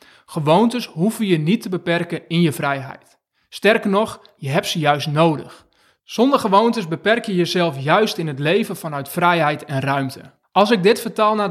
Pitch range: 160-200 Hz